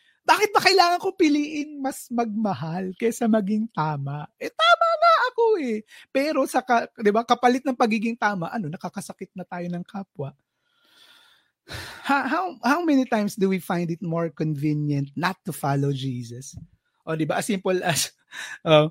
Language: Filipino